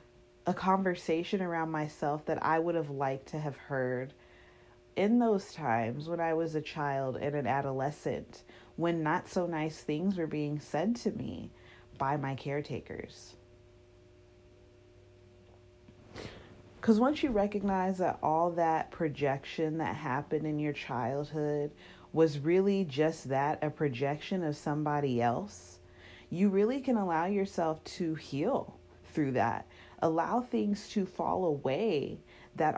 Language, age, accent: English, 30-49, American